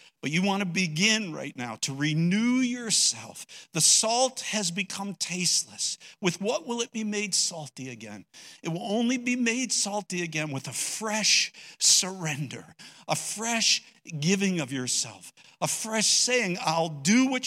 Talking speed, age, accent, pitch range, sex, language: 155 wpm, 50-69, American, 155-205 Hz, male, English